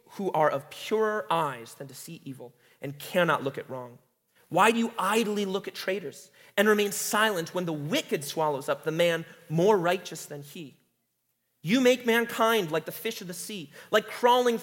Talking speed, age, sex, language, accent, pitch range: 190 wpm, 30-49, male, English, American, 160-215 Hz